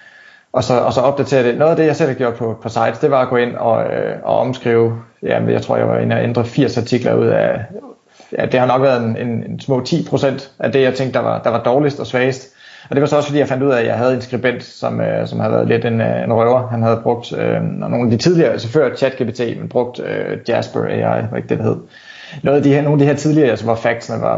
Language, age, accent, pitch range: Danish, 20-39, native, 115-140 Hz